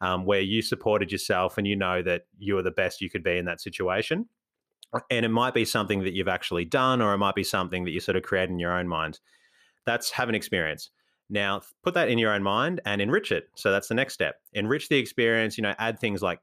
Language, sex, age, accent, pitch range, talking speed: English, male, 30-49, Australian, 100-120 Hz, 250 wpm